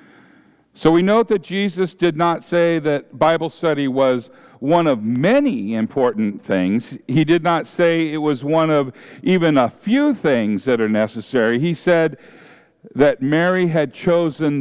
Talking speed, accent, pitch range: 155 wpm, American, 120-180 Hz